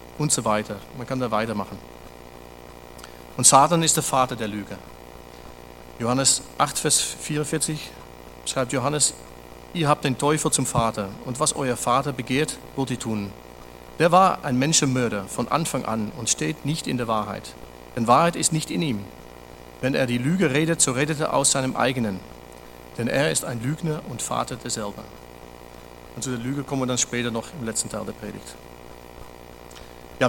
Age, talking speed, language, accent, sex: 40-59, 170 wpm, German, German, male